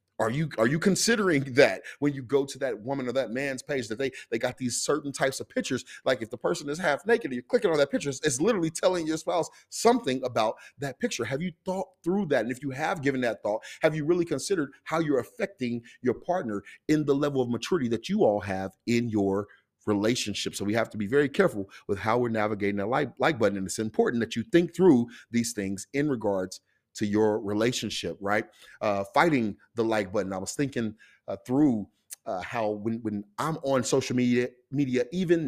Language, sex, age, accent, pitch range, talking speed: English, male, 30-49, American, 110-145 Hz, 220 wpm